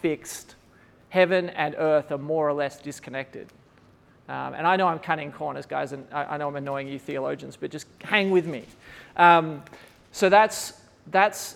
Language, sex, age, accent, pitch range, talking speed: English, male, 30-49, Australian, 150-195 Hz, 175 wpm